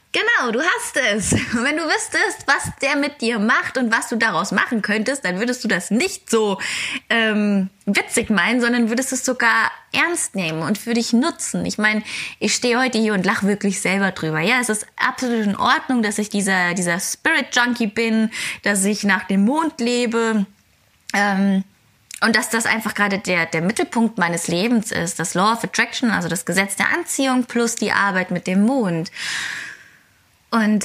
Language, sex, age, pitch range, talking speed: German, female, 20-39, 180-230 Hz, 185 wpm